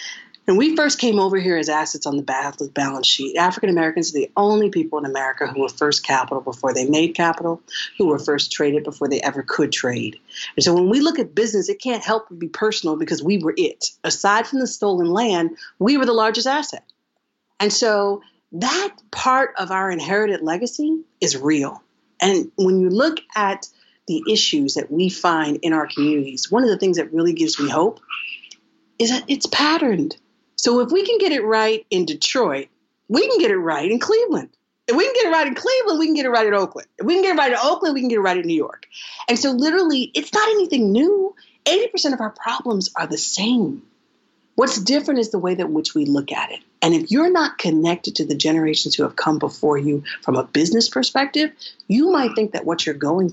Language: English